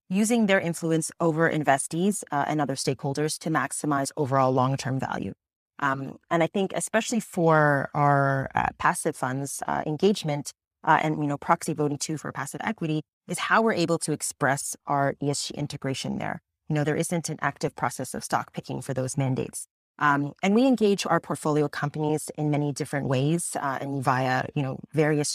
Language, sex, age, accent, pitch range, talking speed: English, female, 30-49, American, 145-170 Hz, 180 wpm